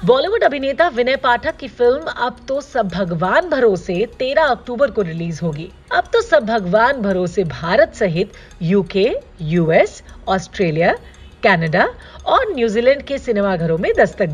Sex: female